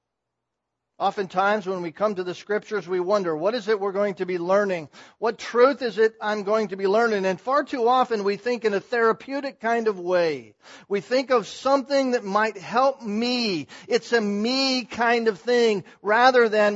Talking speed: 195 wpm